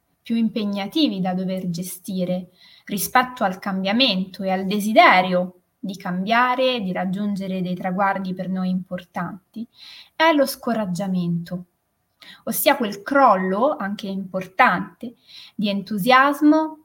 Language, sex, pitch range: Italian, female, 195-265 Hz